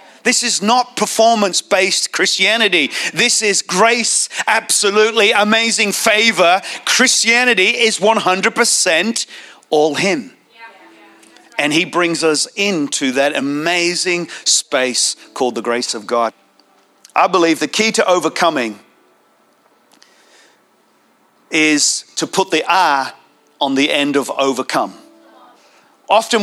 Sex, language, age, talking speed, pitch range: male, English, 40-59, 105 wpm, 175-235 Hz